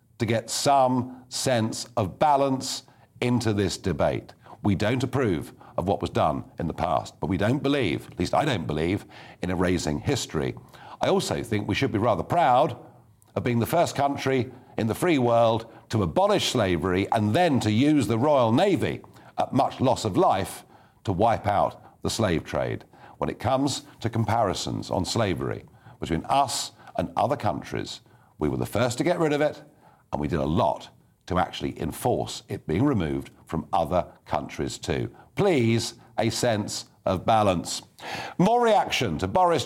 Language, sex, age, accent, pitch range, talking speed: English, male, 50-69, British, 105-135 Hz, 170 wpm